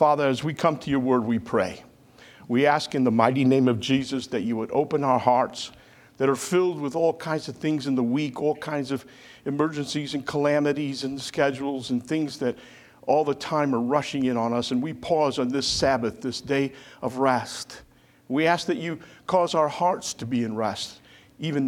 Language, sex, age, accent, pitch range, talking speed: English, male, 50-69, American, 125-150 Hz, 210 wpm